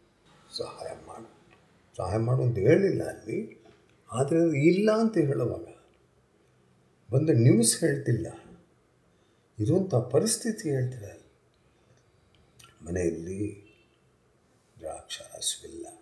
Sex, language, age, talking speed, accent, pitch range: male, Kannada, 50-69, 65 wpm, native, 105-150 Hz